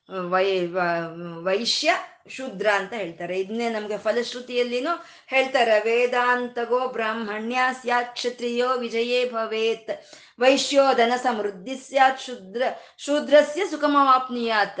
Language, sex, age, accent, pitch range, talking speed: Kannada, female, 20-39, native, 195-255 Hz, 90 wpm